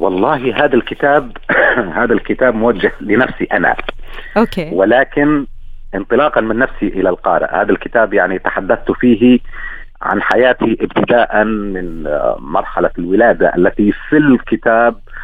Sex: male